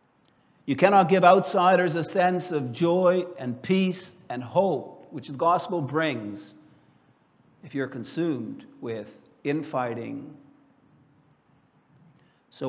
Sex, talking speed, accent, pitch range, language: male, 105 wpm, American, 135-175 Hz, English